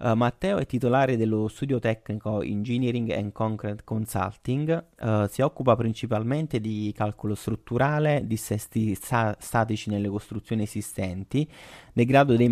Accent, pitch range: native, 105-125 Hz